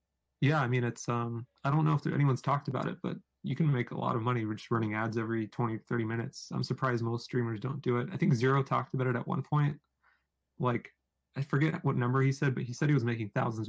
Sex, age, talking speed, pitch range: male, 30-49, 260 wpm, 120-145 Hz